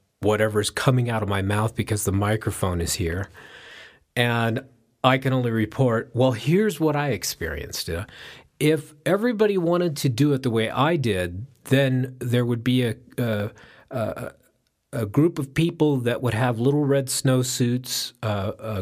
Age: 40-59